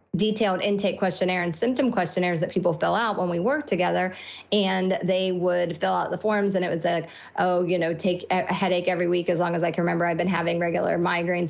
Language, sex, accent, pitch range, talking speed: English, female, American, 175-210 Hz, 230 wpm